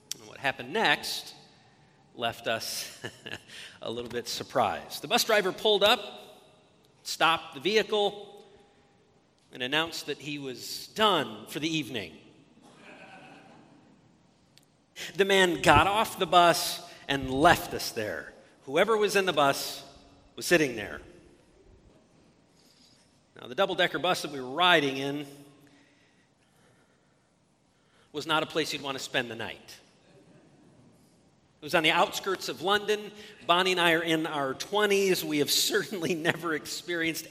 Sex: male